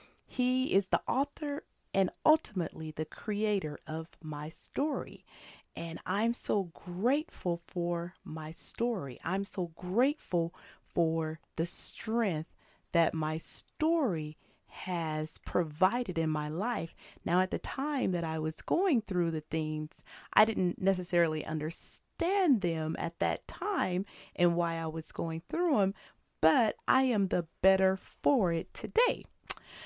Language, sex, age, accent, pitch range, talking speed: English, female, 40-59, American, 165-225 Hz, 135 wpm